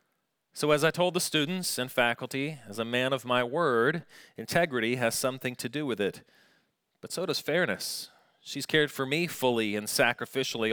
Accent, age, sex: American, 30-49, male